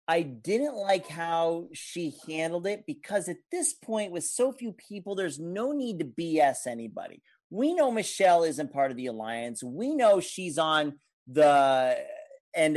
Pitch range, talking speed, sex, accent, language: 155-240 Hz, 165 wpm, male, American, English